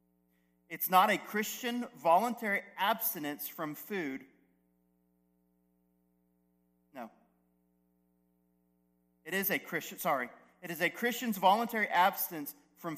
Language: English